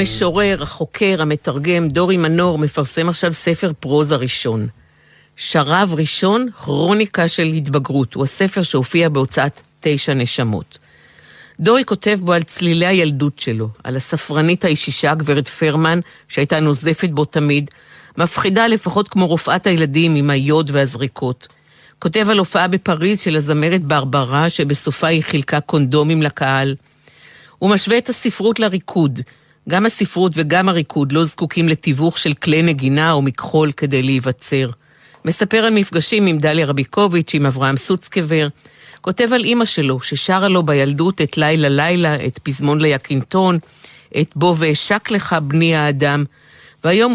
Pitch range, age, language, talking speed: 145-180 Hz, 50-69, Hebrew, 130 wpm